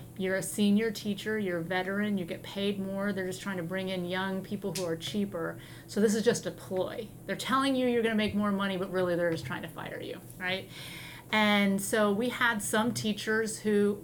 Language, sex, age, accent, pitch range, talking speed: English, female, 30-49, American, 190-225 Hz, 220 wpm